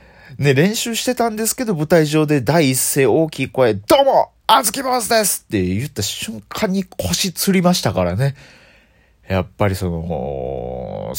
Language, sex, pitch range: Japanese, male, 95-155 Hz